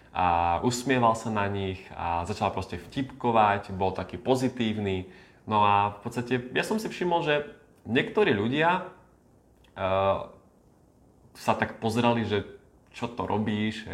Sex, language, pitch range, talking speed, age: male, Slovak, 105-140 Hz, 130 wpm, 20-39